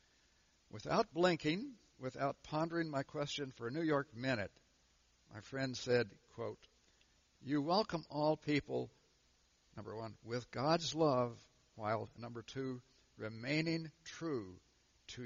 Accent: American